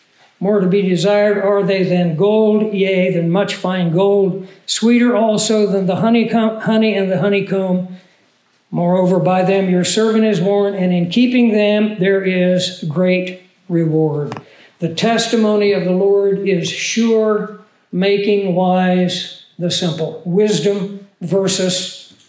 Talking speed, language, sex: 130 wpm, English, male